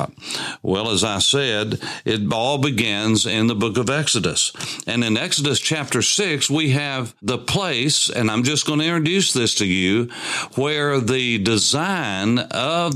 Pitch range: 110-145 Hz